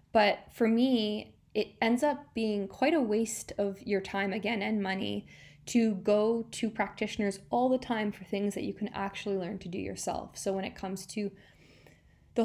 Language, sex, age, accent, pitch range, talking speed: English, female, 10-29, American, 190-225 Hz, 190 wpm